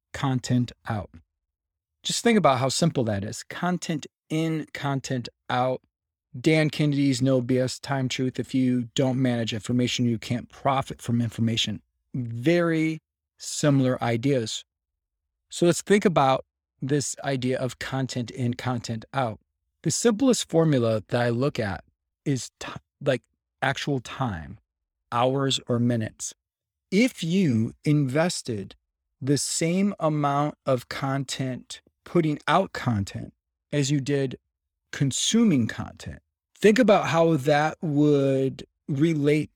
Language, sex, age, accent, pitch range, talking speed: English, male, 30-49, American, 115-145 Hz, 120 wpm